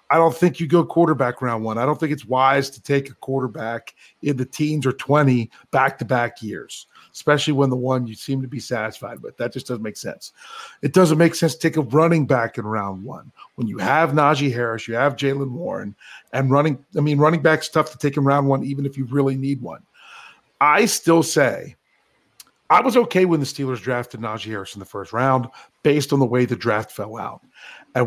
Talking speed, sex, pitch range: 220 wpm, male, 125-155 Hz